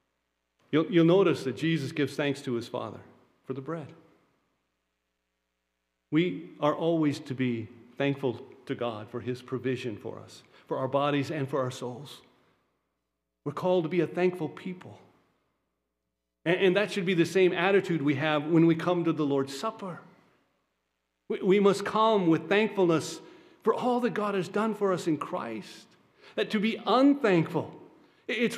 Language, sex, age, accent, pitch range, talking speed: English, male, 50-69, American, 120-195 Hz, 165 wpm